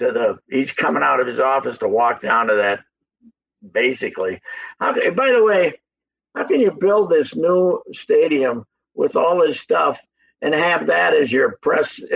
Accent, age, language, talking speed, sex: American, 60-79, English, 175 wpm, male